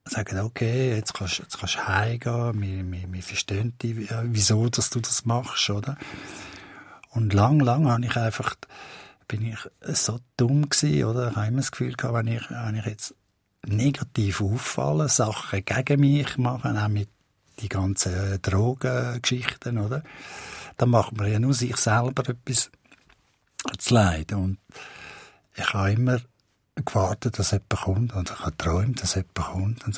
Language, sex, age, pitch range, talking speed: German, male, 50-69, 100-125 Hz, 150 wpm